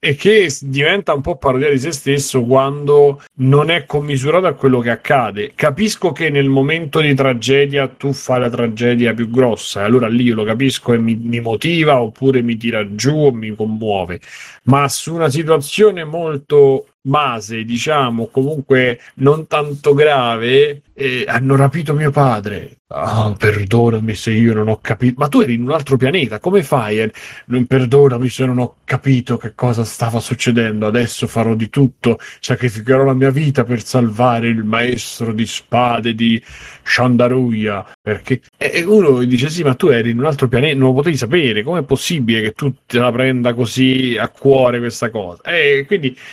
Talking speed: 175 wpm